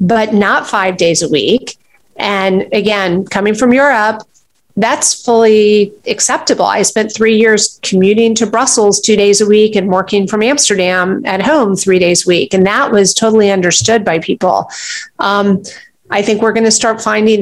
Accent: American